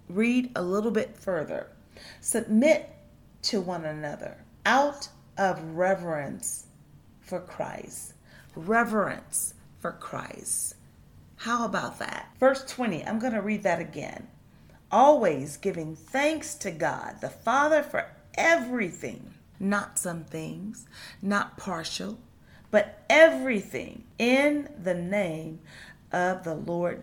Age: 40-59